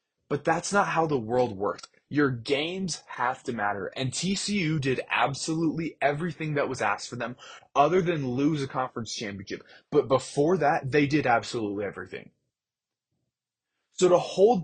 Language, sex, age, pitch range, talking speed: English, male, 20-39, 125-165 Hz, 155 wpm